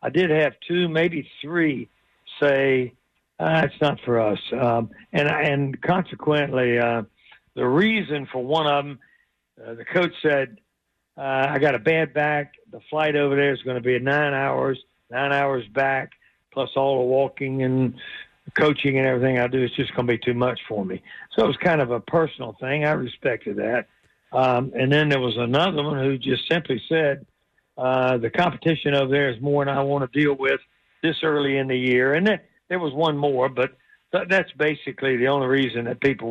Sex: male